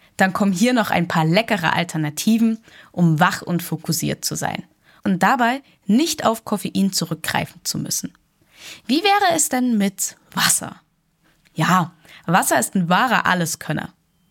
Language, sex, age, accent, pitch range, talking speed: German, female, 10-29, German, 170-215 Hz, 145 wpm